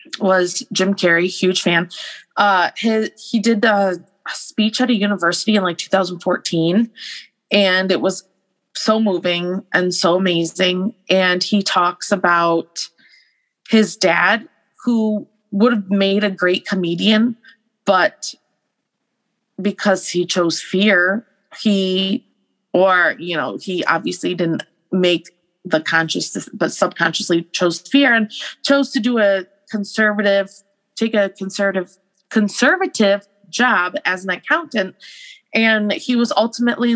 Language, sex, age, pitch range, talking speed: English, female, 20-39, 185-220 Hz, 120 wpm